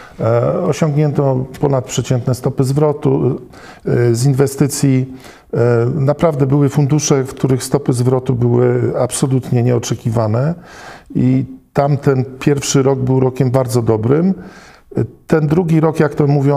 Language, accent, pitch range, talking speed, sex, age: Polish, native, 125-145 Hz, 110 wpm, male, 50-69